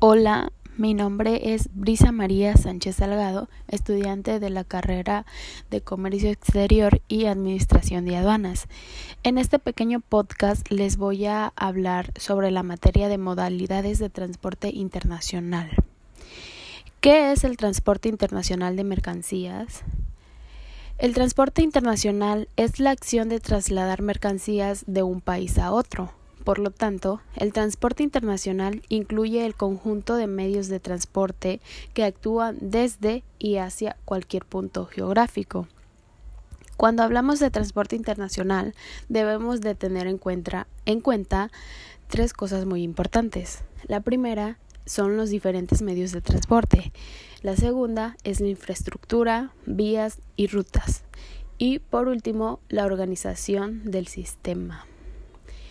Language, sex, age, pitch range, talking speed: Spanish, female, 10-29, 190-220 Hz, 125 wpm